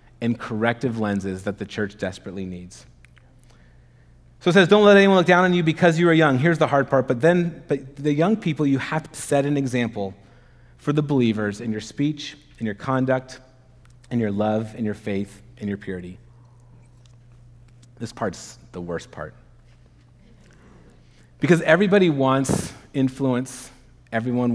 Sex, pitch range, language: male, 105-130 Hz, English